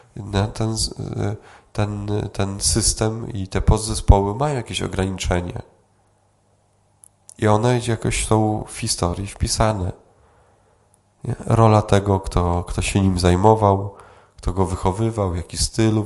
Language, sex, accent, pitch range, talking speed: Polish, male, native, 95-110 Hz, 105 wpm